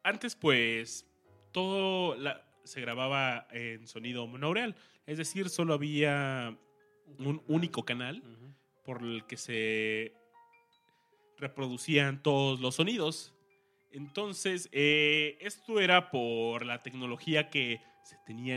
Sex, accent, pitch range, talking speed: male, Mexican, 120-165 Hz, 110 wpm